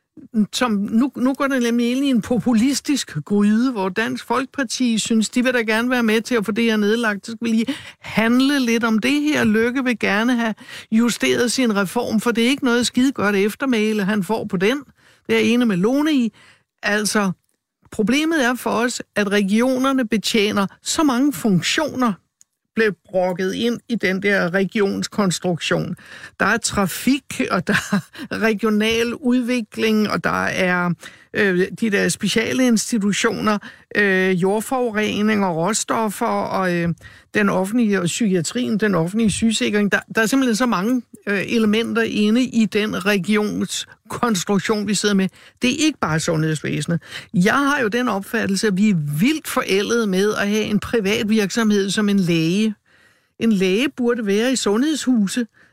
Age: 60-79